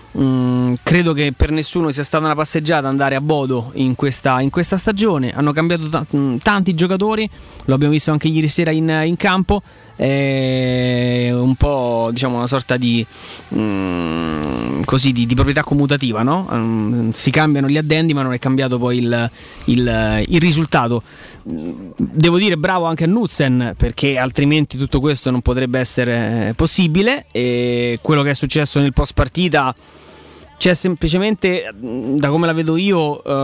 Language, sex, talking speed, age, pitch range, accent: Italian, male, 160 wpm, 20-39, 125-155 Hz, native